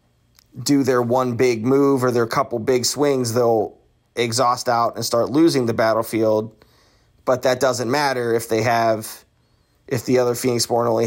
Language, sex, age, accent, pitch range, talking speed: English, male, 30-49, American, 110-130 Hz, 170 wpm